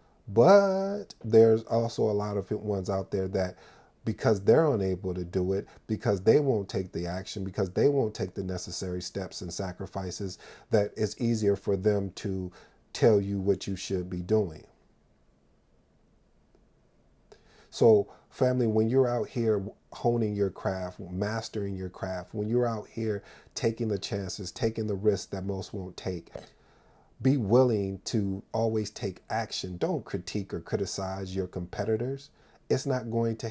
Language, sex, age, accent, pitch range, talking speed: English, male, 40-59, American, 95-115 Hz, 155 wpm